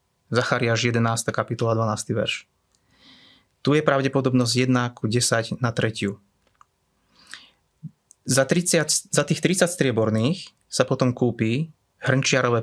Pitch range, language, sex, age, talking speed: 110-130 Hz, Slovak, male, 30-49, 110 wpm